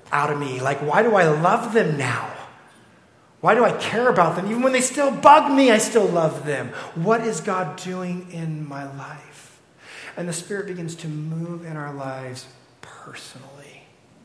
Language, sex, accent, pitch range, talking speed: English, male, American, 135-180 Hz, 180 wpm